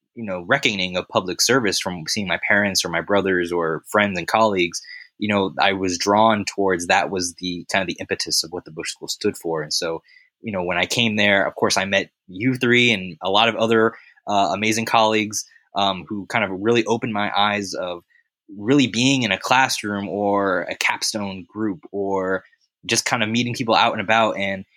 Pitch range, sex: 95-115 Hz, male